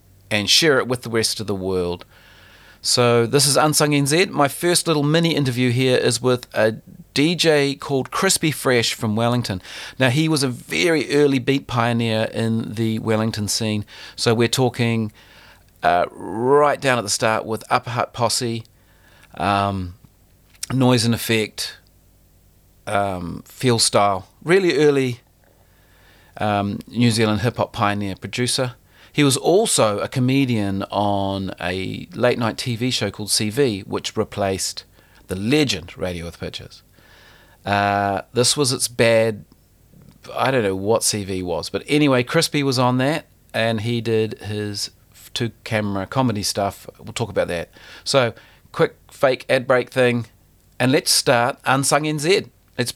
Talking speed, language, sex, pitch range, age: 150 wpm, English, male, 100-130 Hz, 40-59